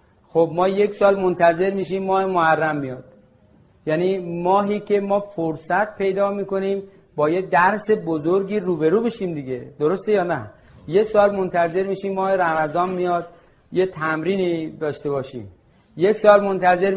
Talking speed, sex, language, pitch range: 145 wpm, male, Persian, 155-190 Hz